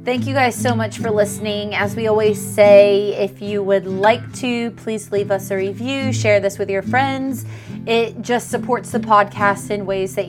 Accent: American